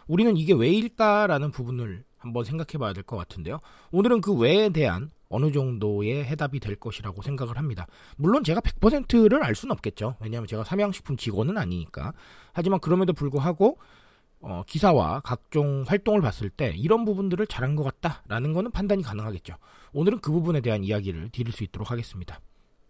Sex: male